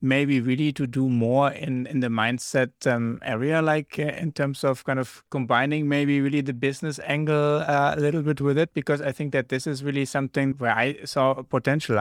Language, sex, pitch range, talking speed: English, male, 115-140 Hz, 210 wpm